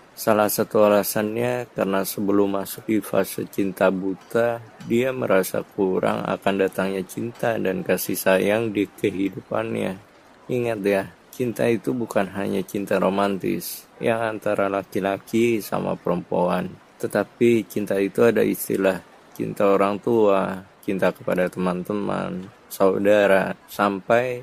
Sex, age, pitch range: male, 20-39, 95-110 Hz